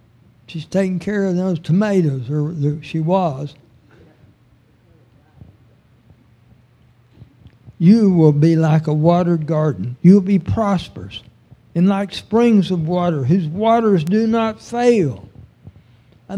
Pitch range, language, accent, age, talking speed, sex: 120-205 Hz, English, American, 60-79, 110 wpm, male